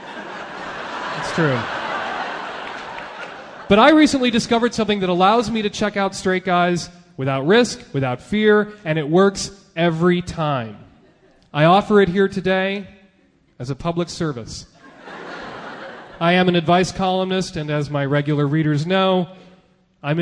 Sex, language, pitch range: male, English, 170-230 Hz